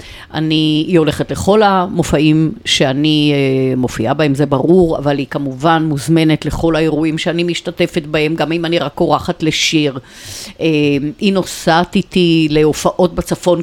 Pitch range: 145-180 Hz